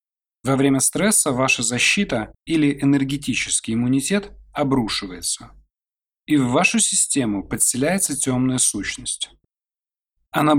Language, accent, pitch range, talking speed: Russian, native, 120-150 Hz, 95 wpm